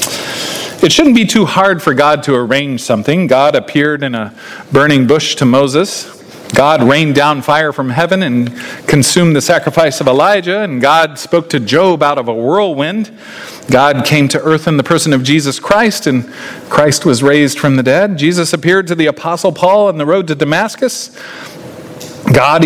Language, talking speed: English, 180 wpm